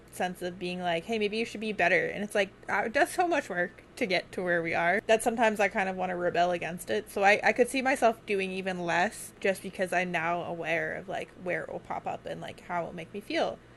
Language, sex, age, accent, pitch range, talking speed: English, female, 20-39, American, 175-215 Hz, 270 wpm